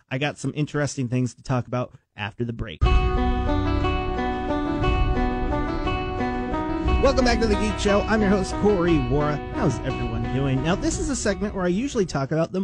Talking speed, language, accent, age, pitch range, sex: 170 wpm, English, American, 30-49, 125-180 Hz, male